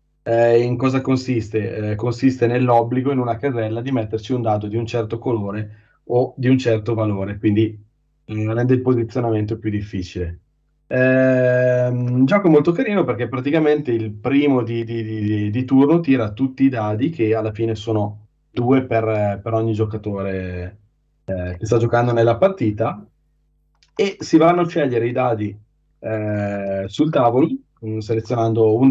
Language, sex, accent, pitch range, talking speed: Italian, male, native, 110-130 Hz, 155 wpm